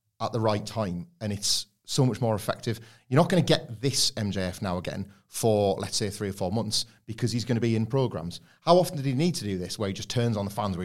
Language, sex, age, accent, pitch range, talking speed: English, male, 30-49, British, 100-120 Hz, 270 wpm